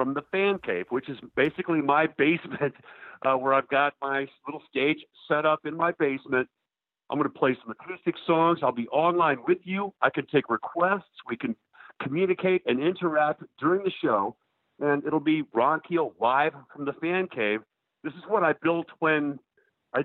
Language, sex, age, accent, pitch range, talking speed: English, male, 50-69, American, 130-170 Hz, 185 wpm